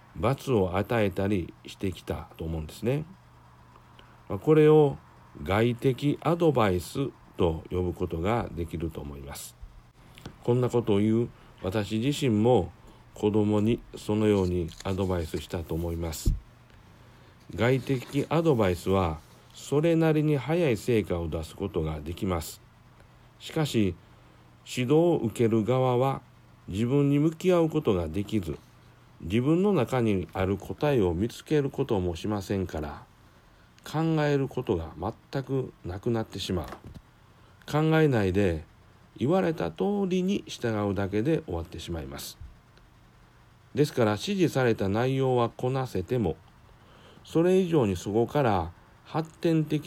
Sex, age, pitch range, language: male, 60-79, 90-135 Hz, Japanese